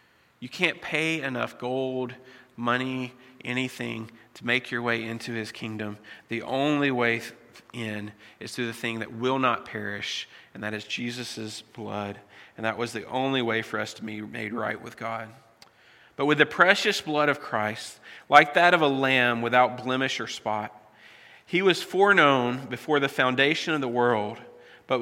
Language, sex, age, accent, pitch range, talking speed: English, male, 40-59, American, 115-145 Hz, 170 wpm